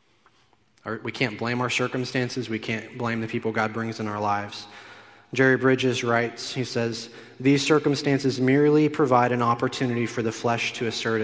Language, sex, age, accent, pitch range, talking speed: English, male, 20-39, American, 115-135 Hz, 165 wpm